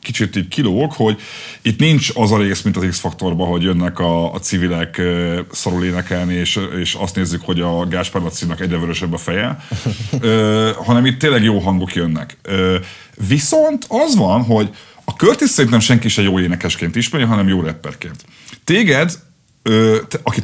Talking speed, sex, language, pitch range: 165 wpm, male, Hungarian, 95-135 Hz